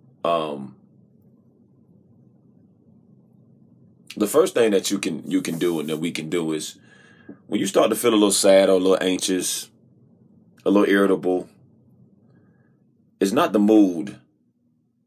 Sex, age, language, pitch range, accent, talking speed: male, 30-49, English, 85-100 Hz, American, 140 wpm